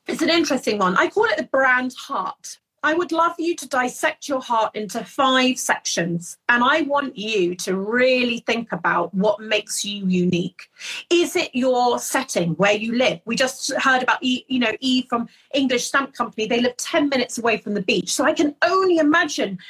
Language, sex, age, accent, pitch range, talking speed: English, female, 30-49, British, 220-300 Hz, 190 wpm